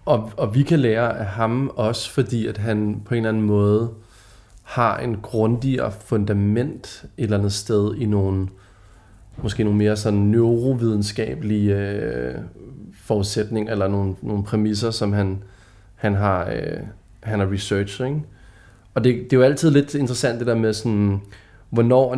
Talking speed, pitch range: 160 wpm, 105-120 Hz